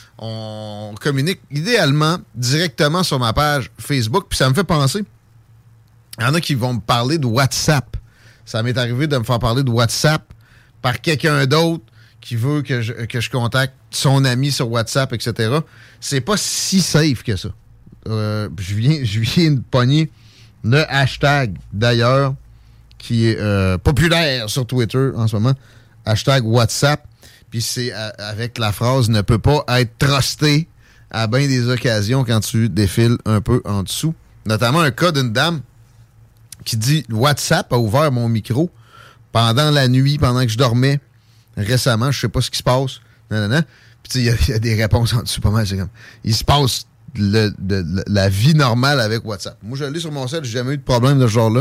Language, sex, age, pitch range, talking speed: French, male, 30-49, 115-140 Hz, 190 wpm